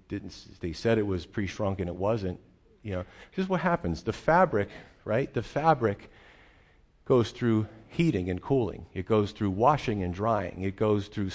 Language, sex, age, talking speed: English, male, 40-59, 175 wpm